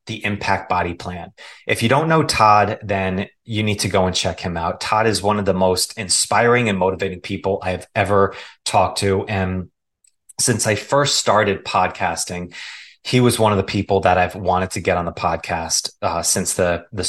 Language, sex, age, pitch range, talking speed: English, male, 30-49, 95-110 Hz, 195 wpm